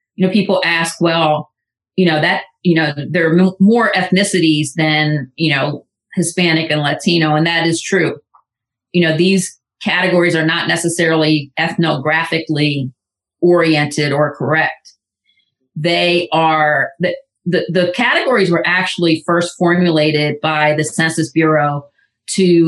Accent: American